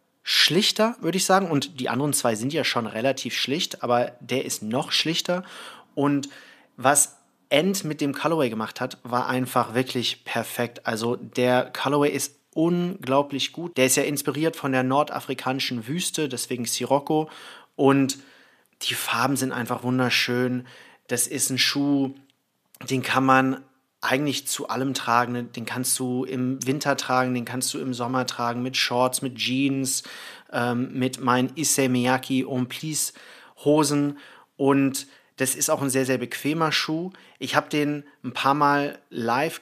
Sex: male